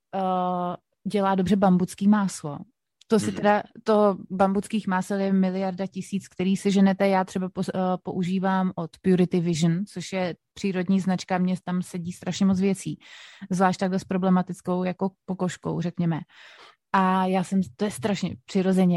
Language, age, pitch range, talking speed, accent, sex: Czech, 30-49, 180-200 Hz, 155 wpm, native, female